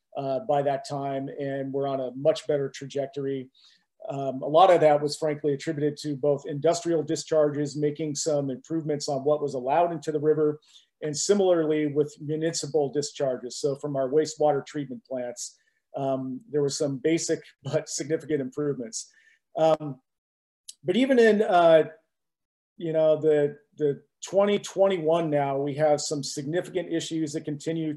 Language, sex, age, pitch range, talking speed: English, male, 40-59, 145-160 Hz, 150 wpm